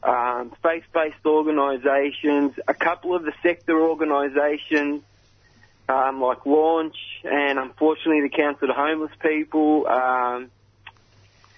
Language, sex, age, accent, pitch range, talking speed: English, male, 30-49, Australian, 145-180 Hz, 110 wpm